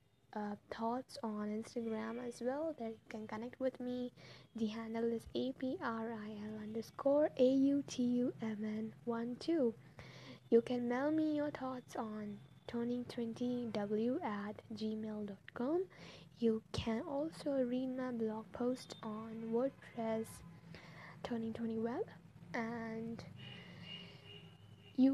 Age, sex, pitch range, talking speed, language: 10-29, female, 220-255 Hz, 100 wpm, English